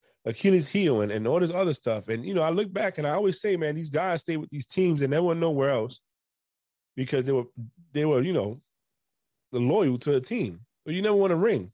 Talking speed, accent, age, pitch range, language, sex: 240 wpm, American, 30-49, 115-170 Hz, English, male